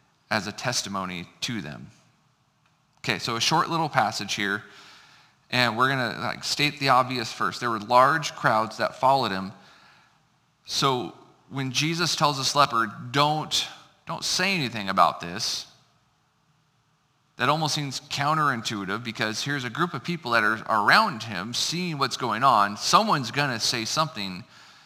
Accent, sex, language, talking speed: American, male, English, 145 wpm